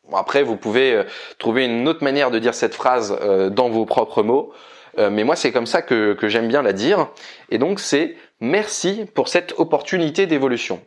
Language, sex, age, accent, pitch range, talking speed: French, male, 20-39, French, 130-195 Hz, 190 wpm